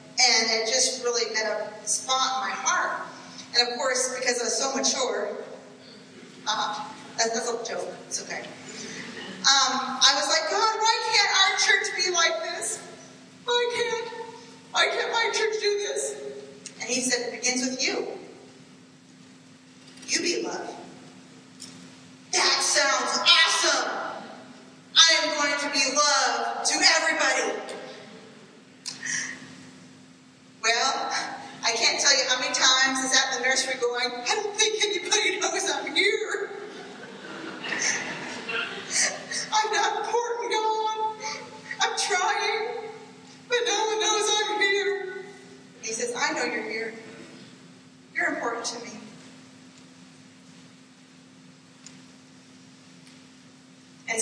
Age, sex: 40-59, female